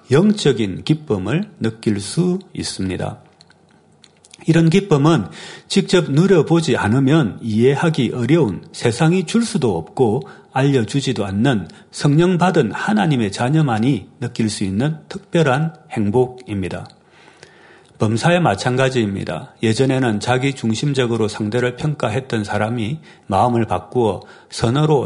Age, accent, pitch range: 40-59, native, 110-155 Hz